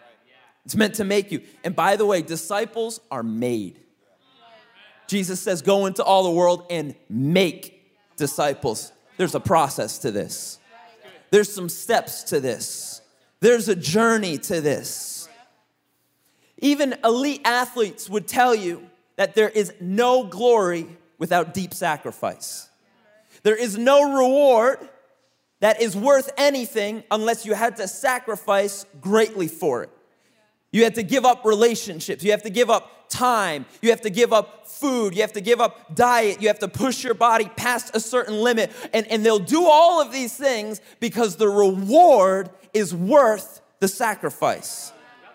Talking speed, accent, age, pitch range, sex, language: 155 wpm, American, 30-49, 200-245 Hz, male, English